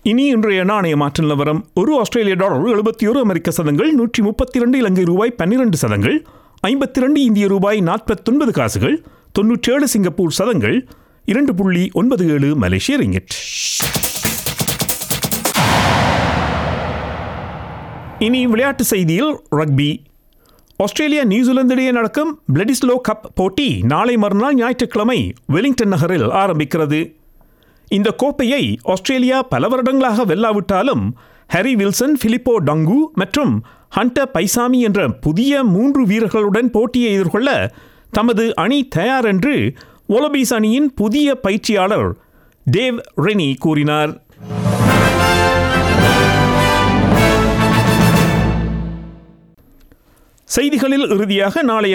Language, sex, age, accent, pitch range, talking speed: Tamil, male, 50-69, native, 165-250 Hz, 90 wpm